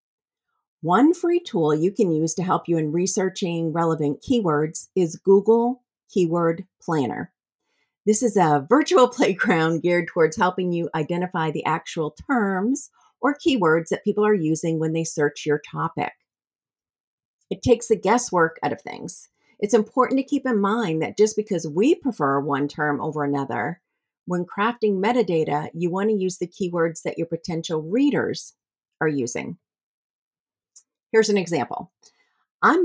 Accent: American